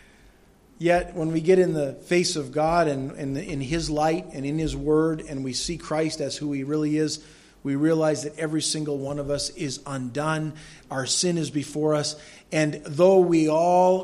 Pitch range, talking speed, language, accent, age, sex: 140-175 Hz, 195 wpm, English, American, 40-59, male